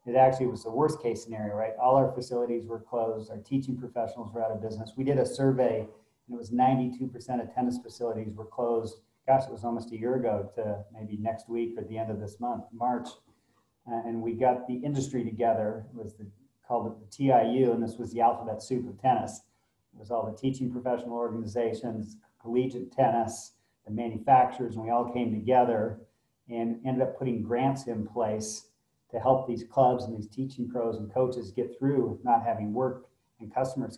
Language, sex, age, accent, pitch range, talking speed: English, male, 40-59, American, 115-130 Hz, 195 wpm